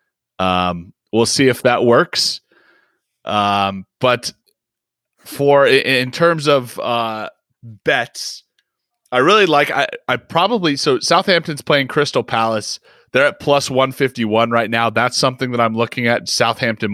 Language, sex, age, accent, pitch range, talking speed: English, male, 30-49, American, 105-135 Hz, 140 wpm